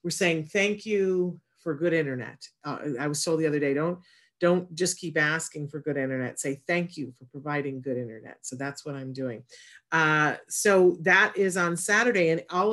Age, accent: 40-59, American